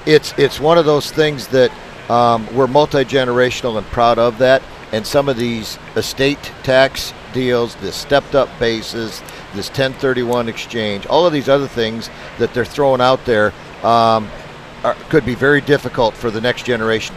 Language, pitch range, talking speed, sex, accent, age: English, 115-135 Hz, 165 wpm, male, American, 50-69